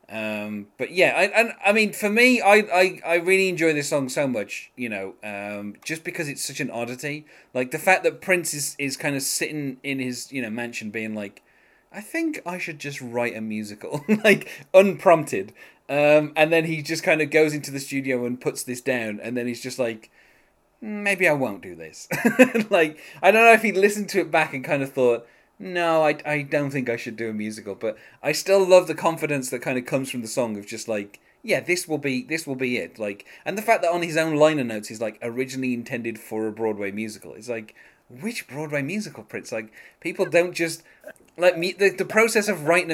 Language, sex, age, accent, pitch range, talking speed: English, male, 20-39, British, 120-175 Hz, 225 wpm